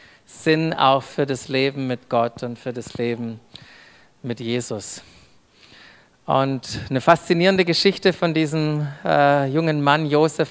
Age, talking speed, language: 40-59, 130 wpm, German